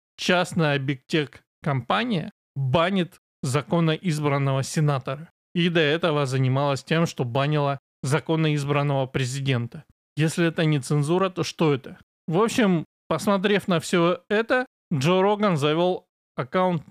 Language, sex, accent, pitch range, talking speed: Russian, male, native, 145-180 Hz, 120 wpm